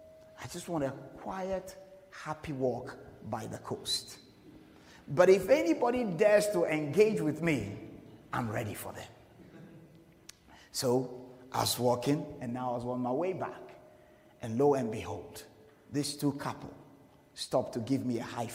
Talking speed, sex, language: 150 wpm, male, English